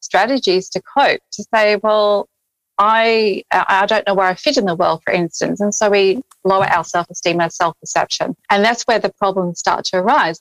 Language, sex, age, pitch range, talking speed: English, female, 30-49, 185-220 Hz, 195 wpm